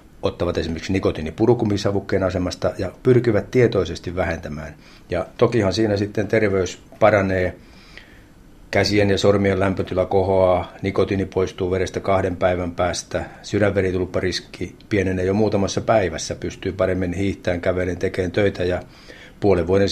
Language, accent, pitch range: Finnish, native, 90-105 Hz